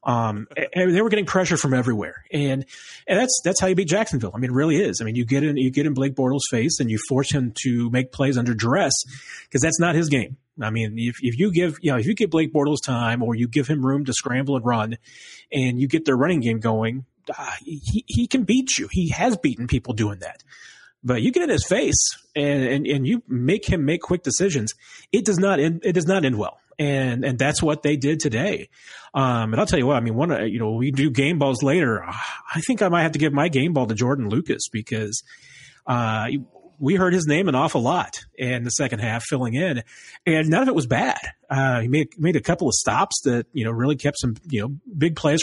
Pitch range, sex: 125-160 Hz, male